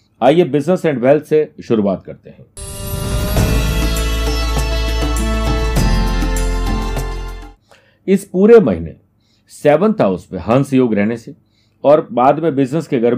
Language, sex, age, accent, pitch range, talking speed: Hindi, male, 50-69, native, 110-145 Hz, 110 wpm